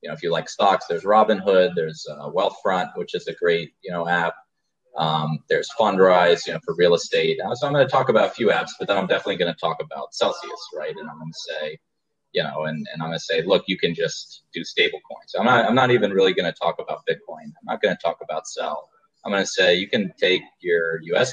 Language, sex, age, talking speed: English, male, 30-49, 255 wpm